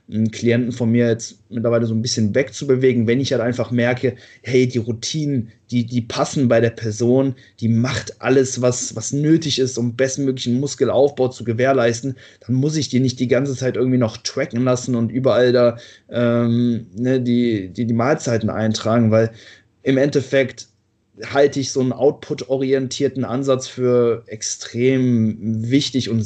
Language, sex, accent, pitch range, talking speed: German, male, German, 115-130 Hz, 160 wpm